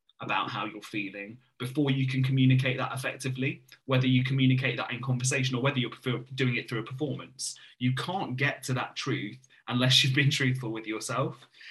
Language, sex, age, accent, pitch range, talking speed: English, male, 30-49, British, 125-135 Hz, 185 wpm